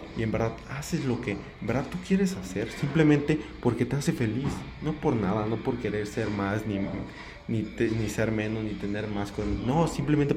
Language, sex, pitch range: Spanish, male, 100-120 Hz